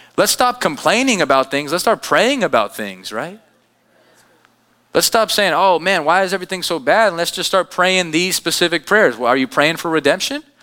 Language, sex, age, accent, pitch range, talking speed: English, male, 30-49, American, 115-175 Hz, 200 wpm